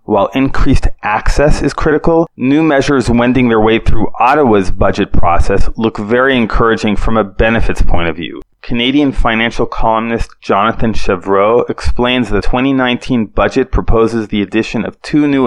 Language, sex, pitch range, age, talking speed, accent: English, male, 100-120 Hz, 30-49, 145 wpm, American